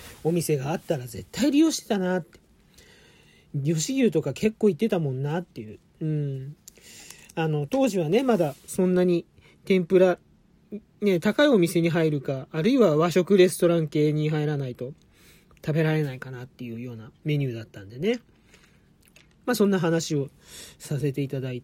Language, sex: Japanese, male